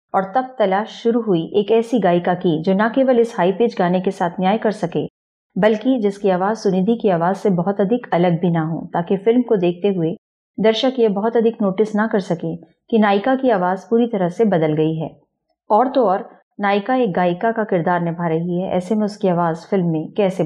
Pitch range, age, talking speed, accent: 175-225 Hz, 30-49, 220 wpm, native